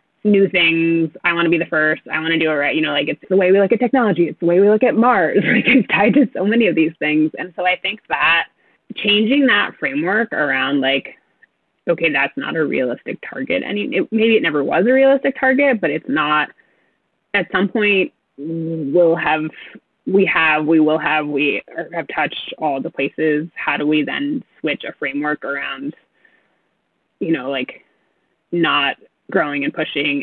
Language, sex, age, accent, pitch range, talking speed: English, female, 20-39, American, 155-210 Hz, 195 wpm